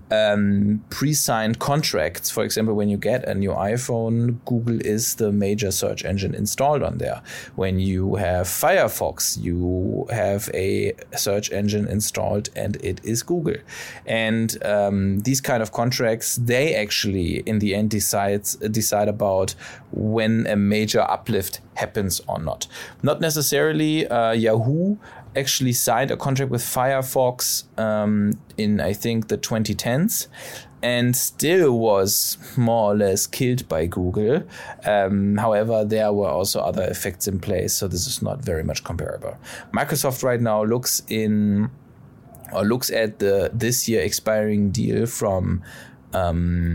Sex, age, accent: male, 20-39, German